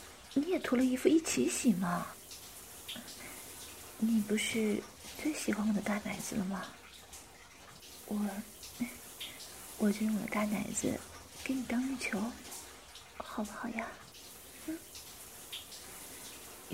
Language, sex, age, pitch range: Chinese, female, 30-49, 215-250 Hz